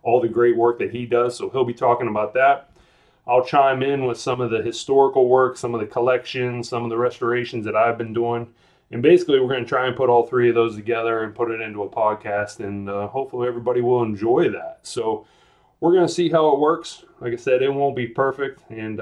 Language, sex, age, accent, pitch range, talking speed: English, male, 30-49, American, 115-130 Hz, 235 wpm